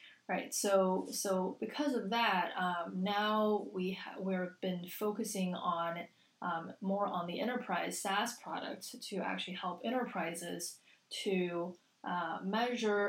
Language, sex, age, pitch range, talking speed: English, female, 20-39, 180-210 Hz, 130 wpm